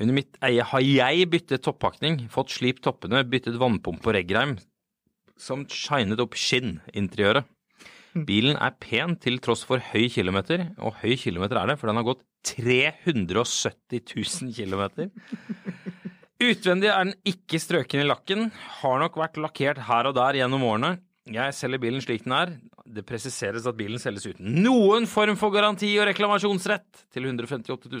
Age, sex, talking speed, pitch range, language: 30-49, male, 155 wpm, 120-175 Hz, English